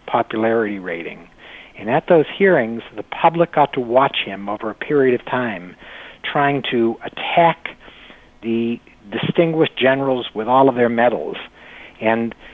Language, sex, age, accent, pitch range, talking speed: English, male, 60-79, American, 110-140 Hz, 140 wpm